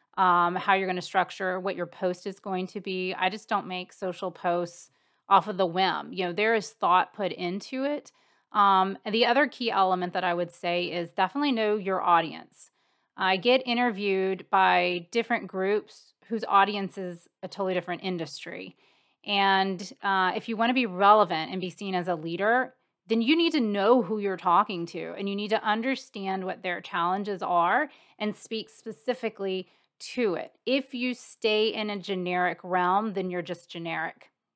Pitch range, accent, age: 180-220 Hz, American, 30-49